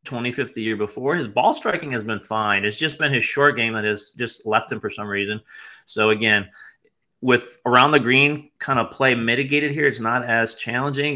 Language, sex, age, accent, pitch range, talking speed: English, male, 30-49, American, 105-125 Hz, 210 wpm